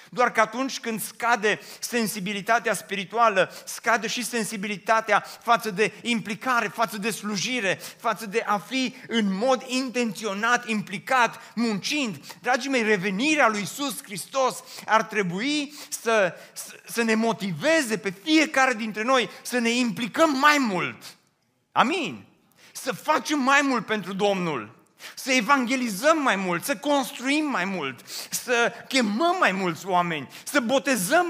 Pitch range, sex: 200-265 Hz, male